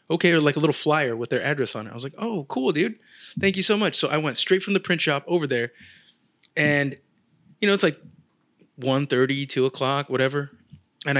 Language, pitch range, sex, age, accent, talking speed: English, 145-190 Hz, male, 20-39, American, 225 wpm